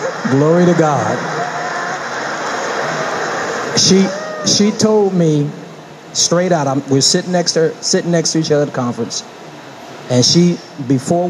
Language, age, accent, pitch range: English, 40-59, American, 120-165 Hz